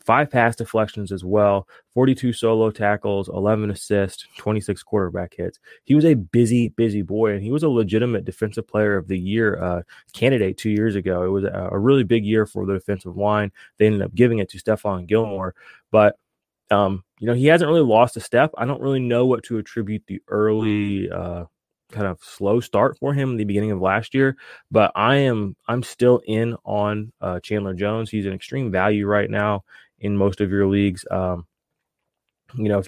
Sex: male